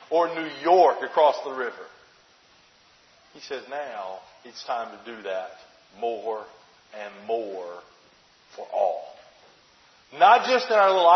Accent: American